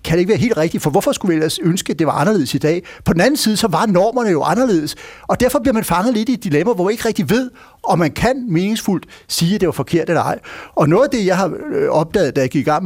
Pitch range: 160-235 Hz